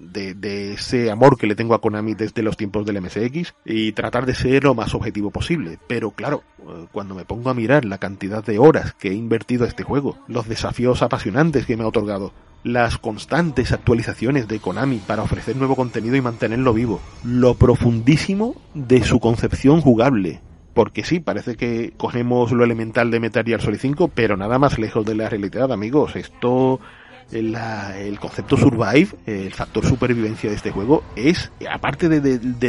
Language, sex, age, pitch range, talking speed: Spanish, male, 40-59, 110-130 Hz, 180 wpm